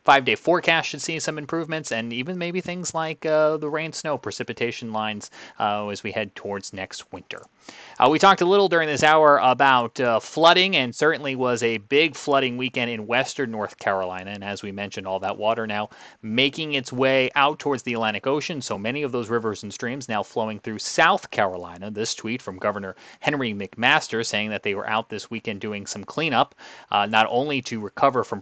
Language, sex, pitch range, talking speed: English, male, 105-155 Hz, 205 wpm